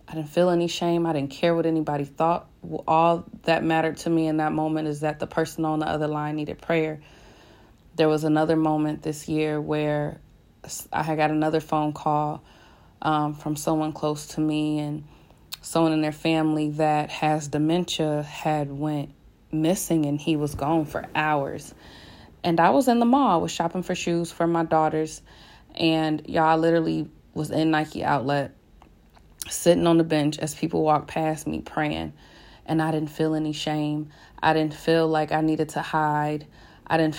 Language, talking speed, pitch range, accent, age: English, 180 wpm, 150-160 Hz, American, 20-39